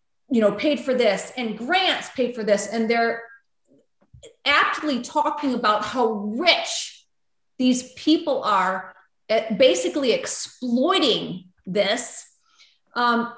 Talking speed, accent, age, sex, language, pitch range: 110 wpm, American, 30-49, female, English, 225-285 Hz